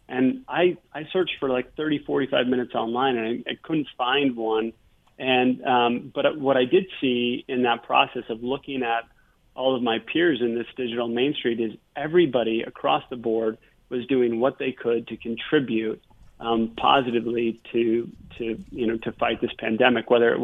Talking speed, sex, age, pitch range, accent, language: 180 wpm, male, 30-49, 115-130 Hz, American, English